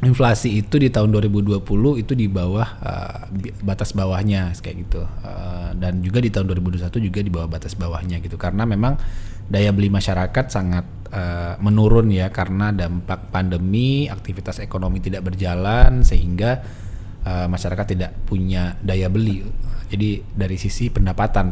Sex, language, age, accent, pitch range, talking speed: male, Indonesian, 20-39, native, 90-105 Hz, 145 wpm